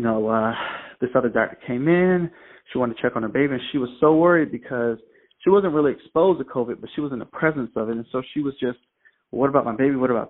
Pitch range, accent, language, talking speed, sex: 120-155 Hz, American, English, 275 wpm, male